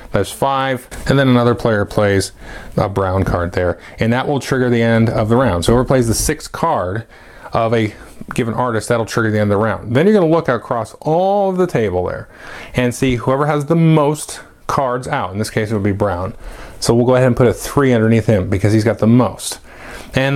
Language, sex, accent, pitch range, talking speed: English, male, American, 105-130 Hz, 235 wpm